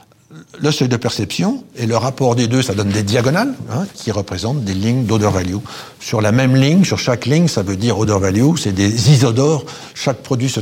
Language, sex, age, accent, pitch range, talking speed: French, male, 60-79, French, 110-135 Hz, 205 wpm